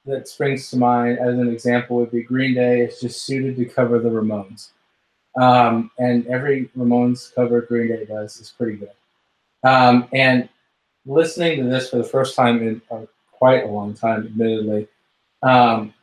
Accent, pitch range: American, 115-130 Hz